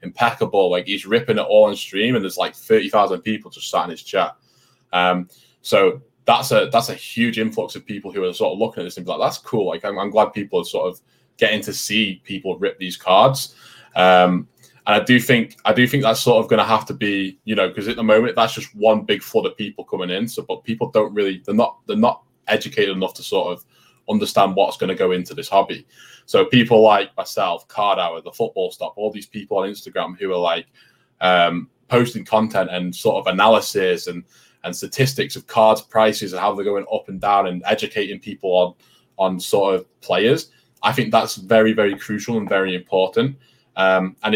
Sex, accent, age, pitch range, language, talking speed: male, British, 20-39, 95-120 Hz, English, 220 wpm